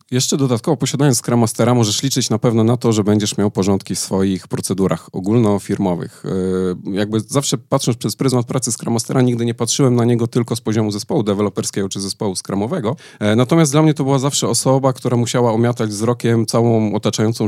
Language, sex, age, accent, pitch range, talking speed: Polish, male, 40-59, native, 105-130 Hz, 180 wpm